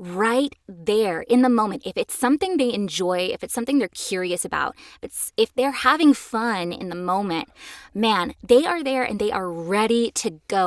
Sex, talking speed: female, 190 wpm